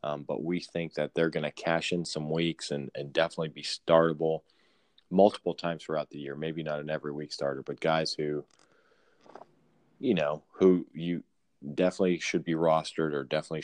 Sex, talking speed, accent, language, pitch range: male, 180 wpm, American, English, 80-90 Hz